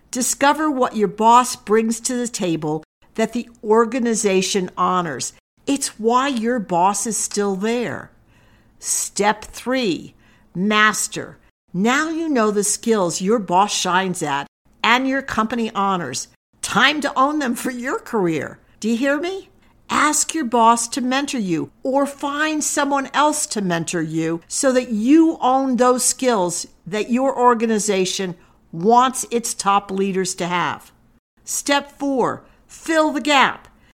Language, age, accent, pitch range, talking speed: English, 50-69, American, 190-265 Hz, 140 wpm